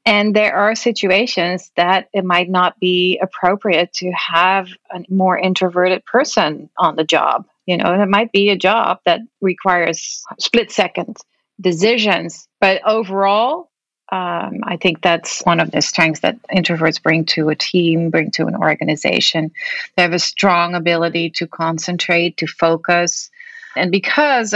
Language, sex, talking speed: English, female, 150 wpm